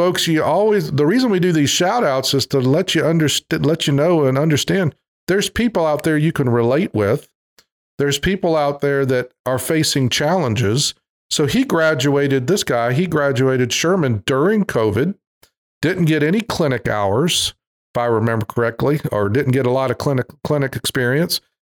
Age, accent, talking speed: 40-59, American, 175 wpm